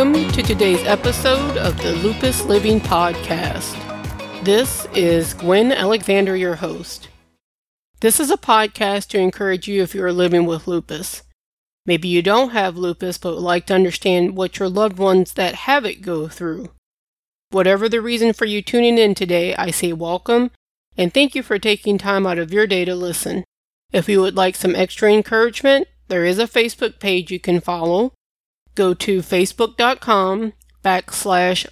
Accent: American